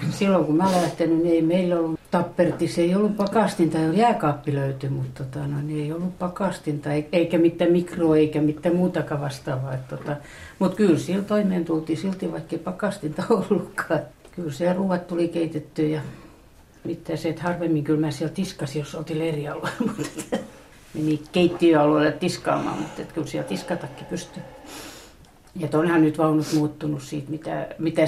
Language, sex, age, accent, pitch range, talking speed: Finnish, female, 60-79, native, 150-175 Hz, 150 wpm